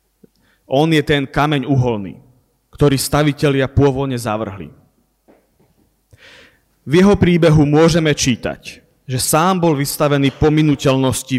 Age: 30-49